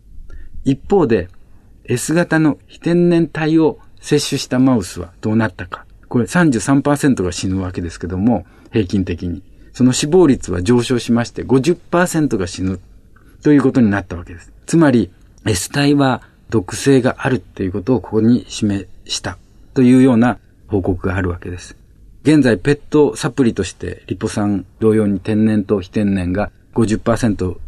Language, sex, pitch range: Japanese, male, 95-125 Hz